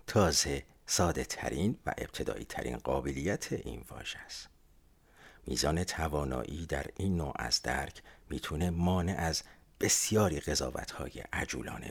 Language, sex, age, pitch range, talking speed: Persian, male, 50-69, 70-95 Hz, 120 wpm